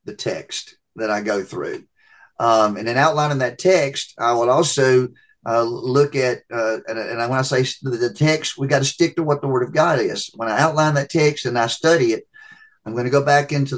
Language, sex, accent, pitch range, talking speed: English, male, American, 125-150 Hz, 225 wpm